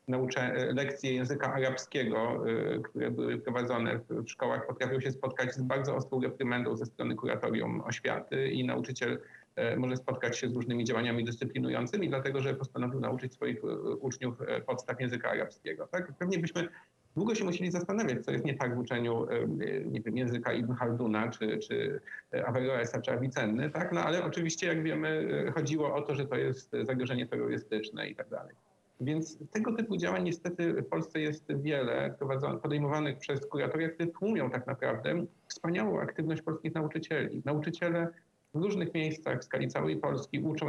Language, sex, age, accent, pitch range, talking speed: English, male, 40-59, Polish, 125-160 Hz, 160 wpm